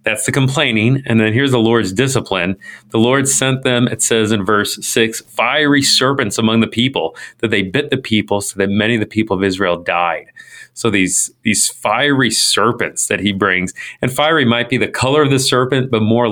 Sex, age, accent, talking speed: male, 40-59, American, 205 wpm